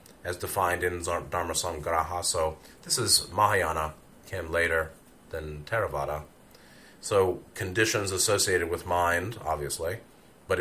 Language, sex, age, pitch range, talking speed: English, male, 30-49, 80-95 Hz, 105 wpm